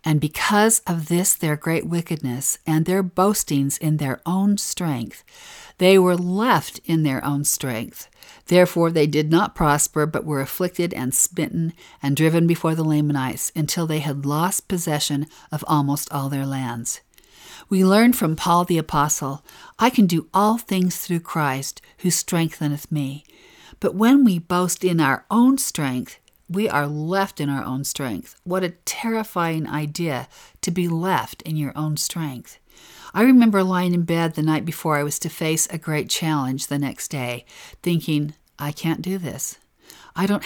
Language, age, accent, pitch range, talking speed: English, 50-69, American, 150-185 Hz, 170 wpm